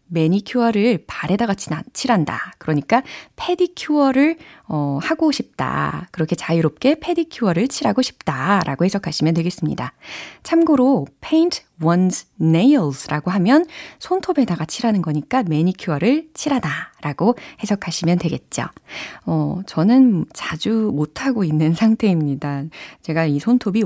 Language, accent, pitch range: Korean, native, 160-260 Hz